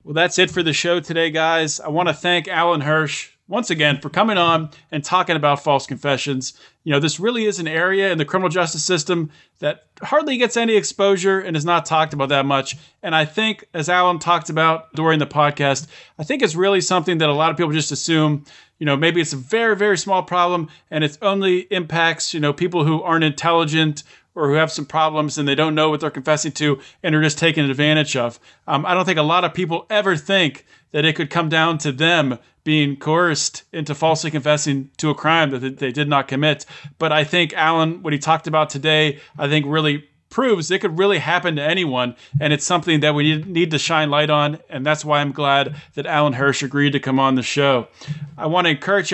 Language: English